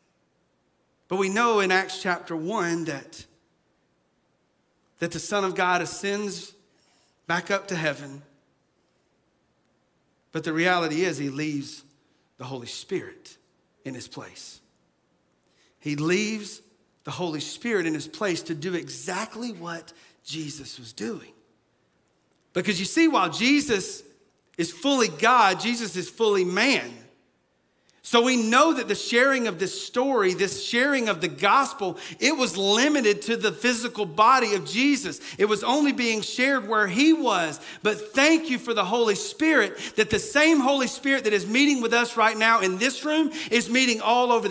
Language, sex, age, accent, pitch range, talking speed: English, male, 40-59, American, 180-250 Hz, 155 wpm